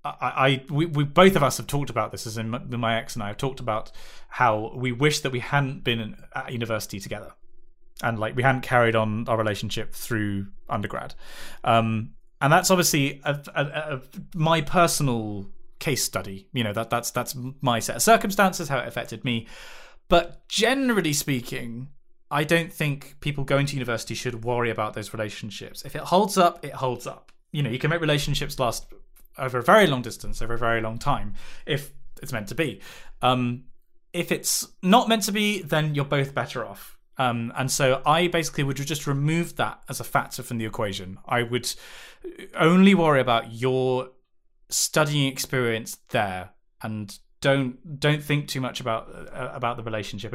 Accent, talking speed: British, 185 wpm